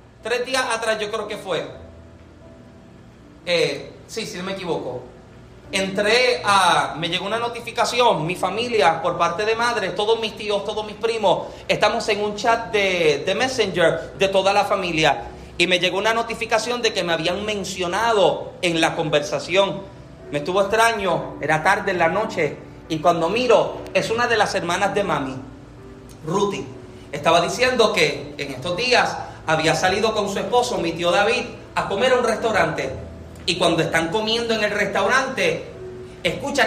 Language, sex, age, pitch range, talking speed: Spanish, male, 30-49, 170-225 Hz, 165 wpm